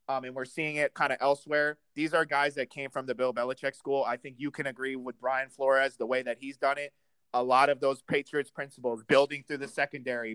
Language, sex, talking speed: English, male, 245 wpm